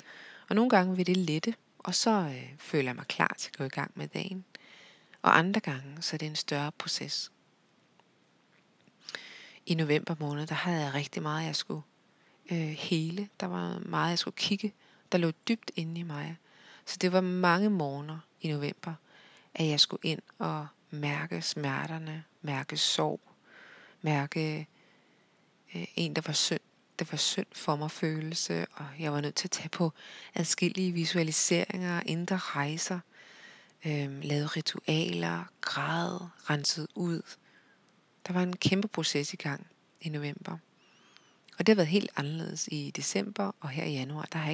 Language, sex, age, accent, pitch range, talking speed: Danish, female, 30-49, native, 150-185 Hz, 160 wpm